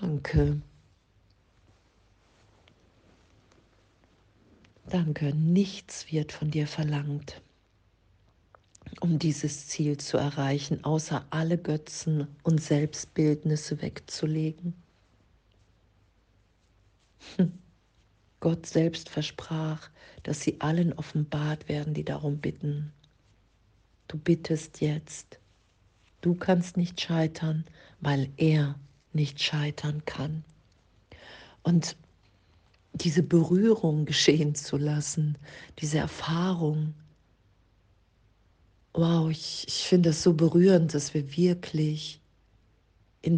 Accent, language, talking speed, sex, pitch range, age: German, German, 85 wpm, female, 100-160 Hz, 50-69